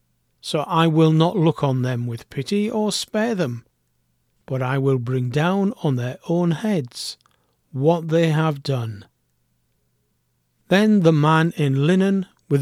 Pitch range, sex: 125-170 Hz, male